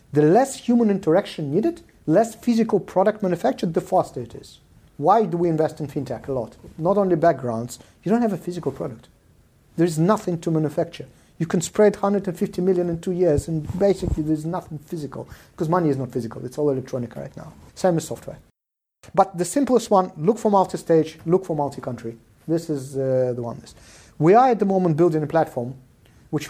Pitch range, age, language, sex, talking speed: 135-180 Hz, 50-69, English, male, 190 wpm